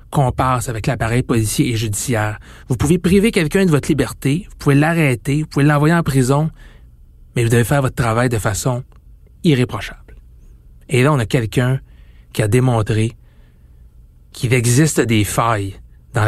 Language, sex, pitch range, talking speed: French, male, 105-145 Hz, 160 wpm